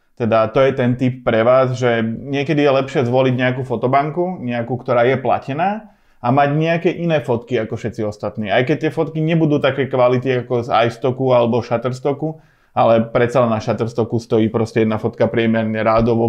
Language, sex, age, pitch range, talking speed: Slovak, male, 20-39, 115-140 Hz, 180 wpm